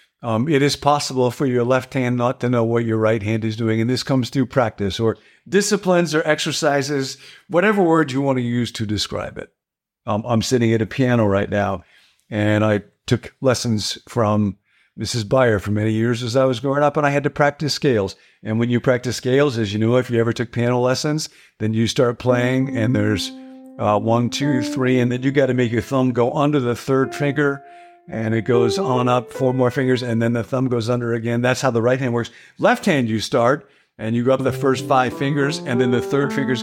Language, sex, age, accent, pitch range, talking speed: English, male, 50-69, American, 115-145 Hz, 230 wpm